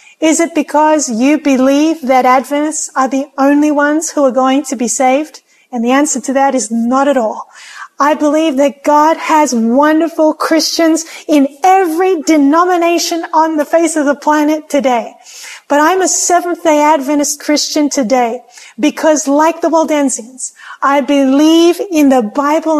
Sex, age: female, 40-59